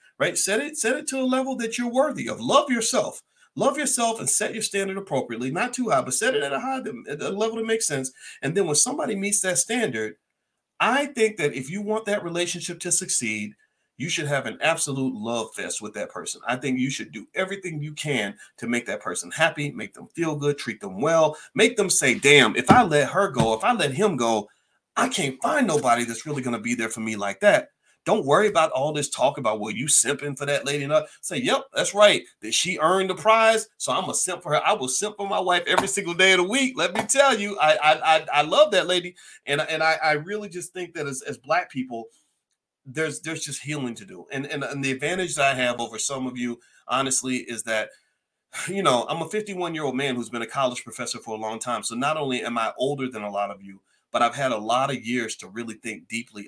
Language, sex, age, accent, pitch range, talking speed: English, male, 40-59, American, 130-200 Hz, 250 wpm